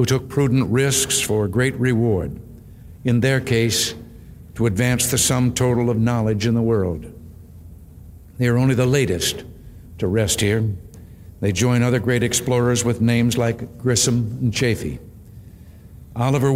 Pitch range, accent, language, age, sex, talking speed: 100-125 Hz, American, English, 60-79, male, 145 wpm